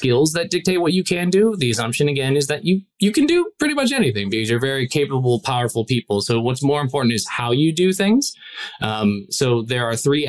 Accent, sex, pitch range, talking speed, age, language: American, male, 110-140 Hz, 225 wpm, 20-39, English